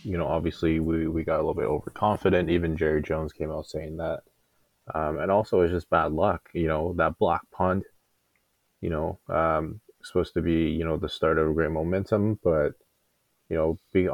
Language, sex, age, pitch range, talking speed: English, male, 20-39, 80-85 Hz, 200 wpm